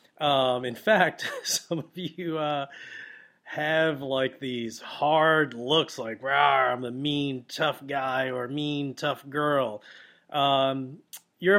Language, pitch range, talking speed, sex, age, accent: English, 135-185 Hz, 125 wpm, male, 30-49, American